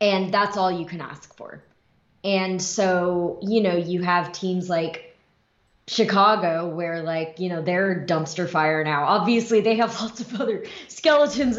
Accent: American